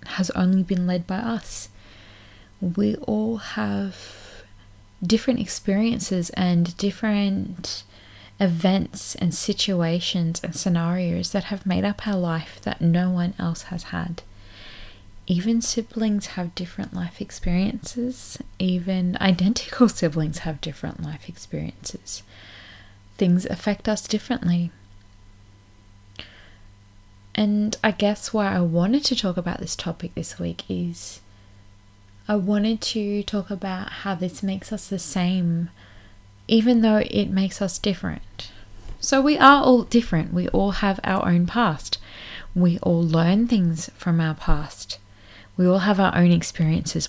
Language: English